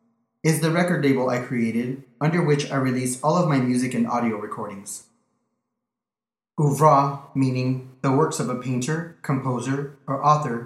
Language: English